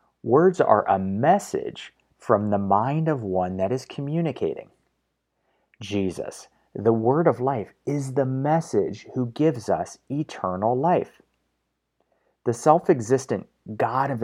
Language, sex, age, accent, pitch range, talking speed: English, male, 40-59, American, 100-145 Hz, 120 wpm